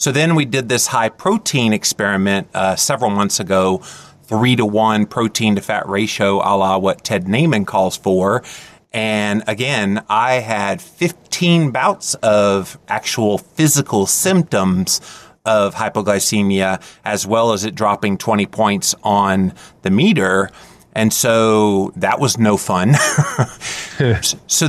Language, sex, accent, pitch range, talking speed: English, male, American, 100-115 Hz, 135 wpm